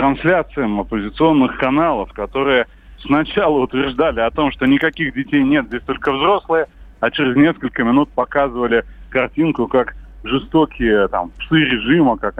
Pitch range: 110-155 Hz